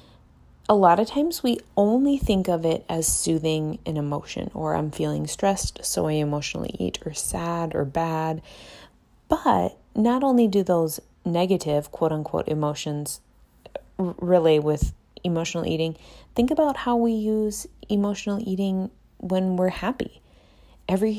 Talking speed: 135 wpm